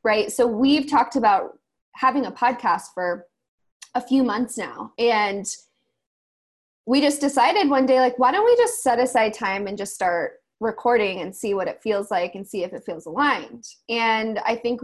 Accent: American